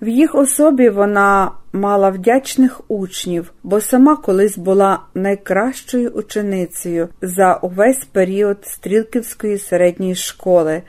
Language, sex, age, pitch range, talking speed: Ukrainian, female, 50-69, 185-230 Hz, 105 wpm